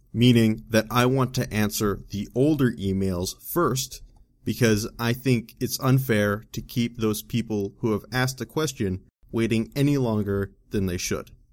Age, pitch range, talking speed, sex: 30-49, 105-125 Hz, 155 wpm, male